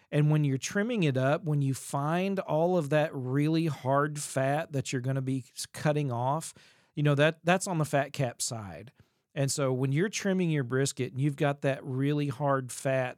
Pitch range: 125-145 Hz